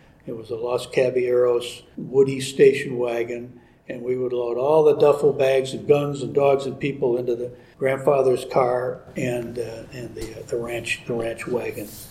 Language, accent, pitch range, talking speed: English, American, 120-135 Hz, 180 wpm